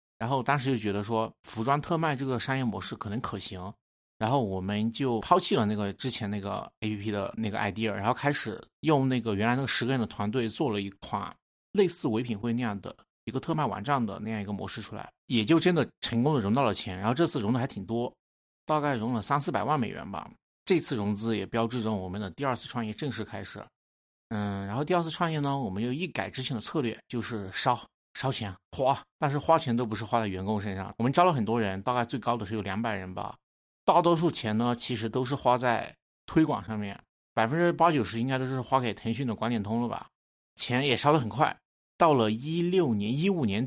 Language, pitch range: Chinese, 105-130 Hz